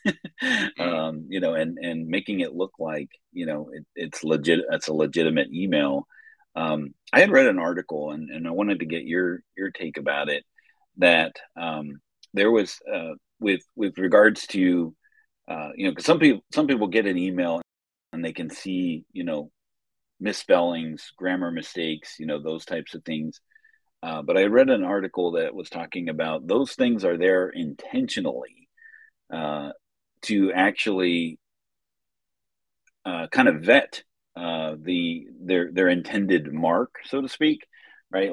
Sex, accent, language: male, American, English